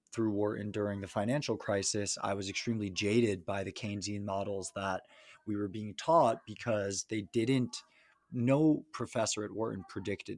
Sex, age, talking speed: male, 20-39, 155 wpm